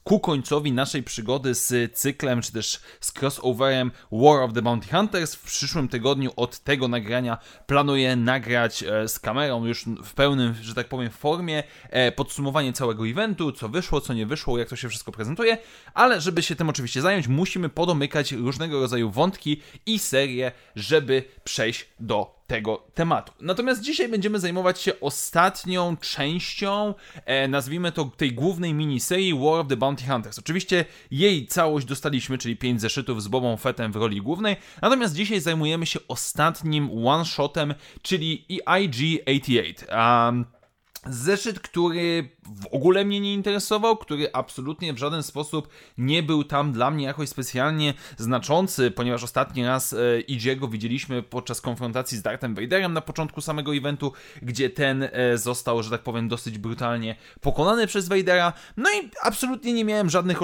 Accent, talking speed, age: native, 155 wpm, 20-39